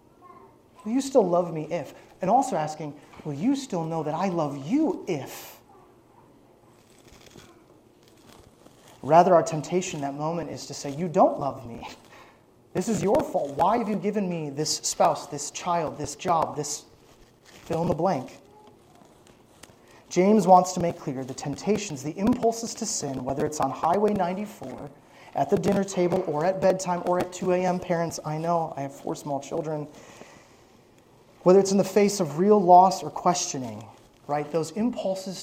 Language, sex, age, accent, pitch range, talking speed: English, male, 30-49, American, 145-190 Hz, 170 wpm